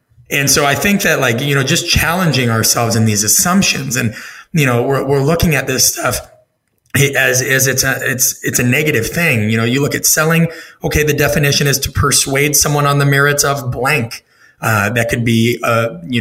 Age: 30-49